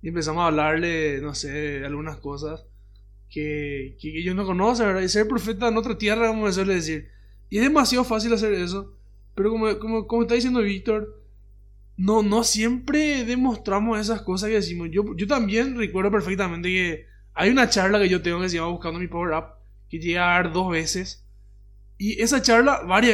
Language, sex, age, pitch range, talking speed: Spanish, male, 20-39, 155-215 Hz, 195 wpm